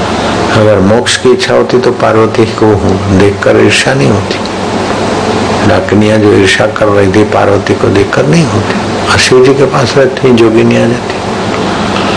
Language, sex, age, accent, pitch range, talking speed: Hindi, male, 60-79, native, 105-115 Hz, 160 wpm